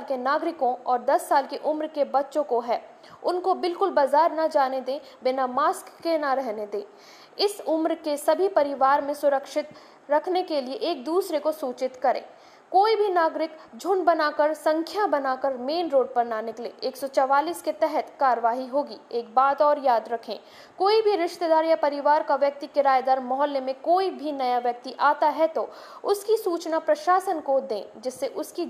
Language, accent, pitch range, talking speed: Hindi, native, 265-330 Hz, 155 wpm